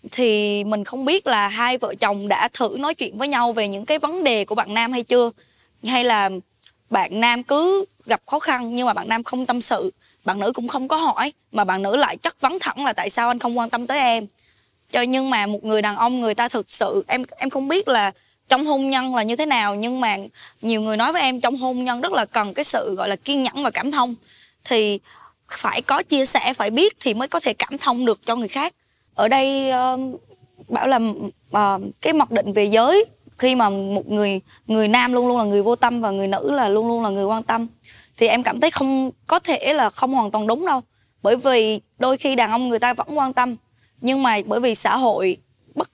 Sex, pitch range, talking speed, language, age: female, 215-270 Hz, 245 wpm, Vietnamese, 20-39